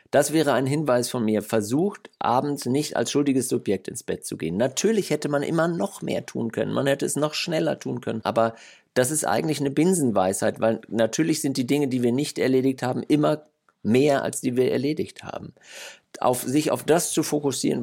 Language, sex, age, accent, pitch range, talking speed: German, male, 50-69, German, 110-145 Hz, 200 wpm